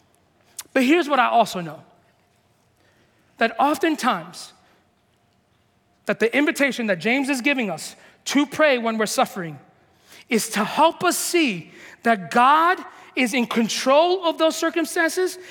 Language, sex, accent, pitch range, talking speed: English, male, American, 190-270 Hz, 130 wpm